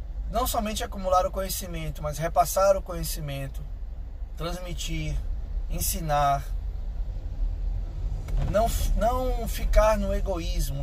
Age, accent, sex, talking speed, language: 20-39, Brazilian, male, 90 wpm, Portuguese